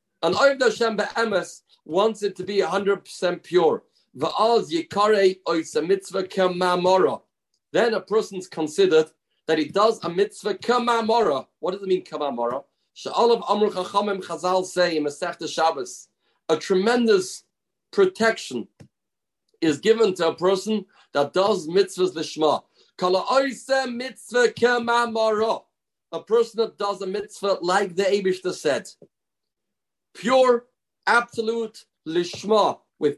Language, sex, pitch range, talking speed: English, male, 170-225 Hz, 130 wpm